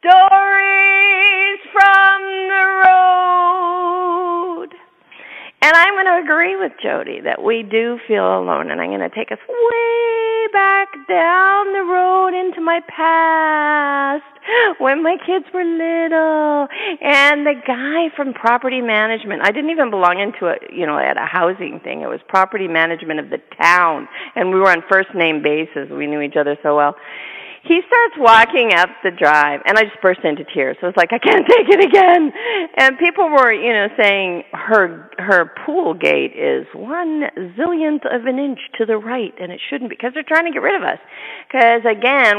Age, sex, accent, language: 40-59, female, American, English